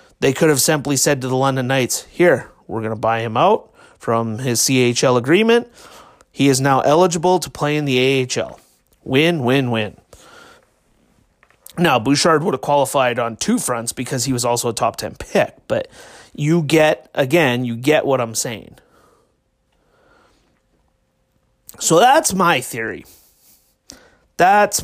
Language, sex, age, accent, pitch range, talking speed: English, male, 30-49, American, 135-175 Hz, 150 wpm